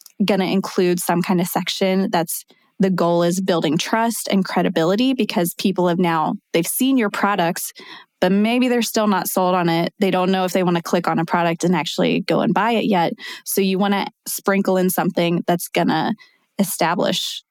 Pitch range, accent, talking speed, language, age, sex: 180-215 Hz, American, 205 wpm, English, 20-39, female